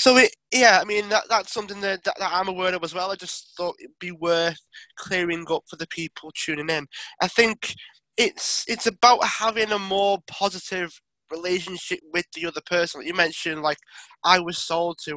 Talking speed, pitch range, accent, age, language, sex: 200 wpm, 160-190 Hz, British, 20-39, English, male